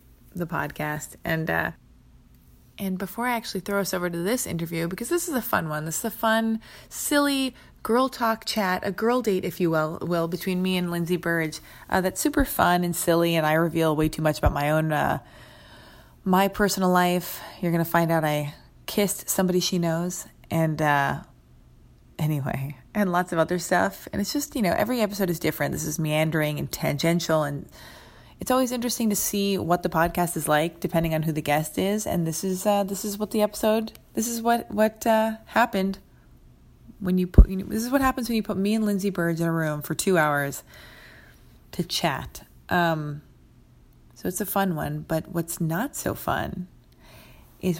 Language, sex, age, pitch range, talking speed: English, female, 30-49, 160-200 Hz, 200 wpm